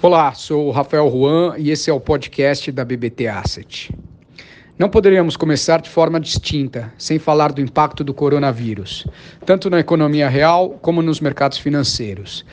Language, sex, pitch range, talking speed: English, male, 135-165 Hz, 160 wpm